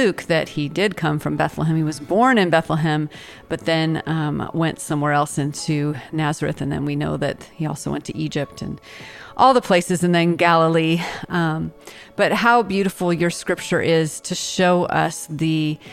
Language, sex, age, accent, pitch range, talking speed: English, female, 40-59, American, 155-180 Hz, 180 wpm